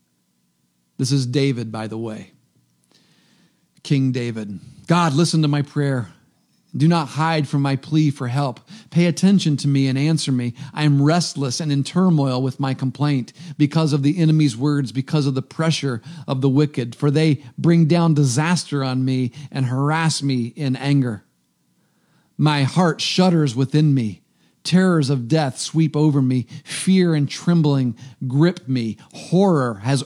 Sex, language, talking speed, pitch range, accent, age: male, English, 160 wpm, 130-160 Hz, American, 50-69